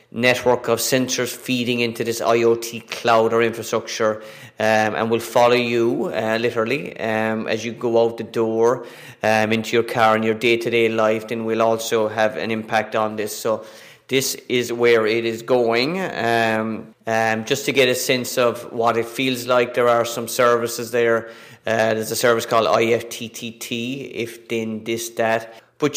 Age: 30-49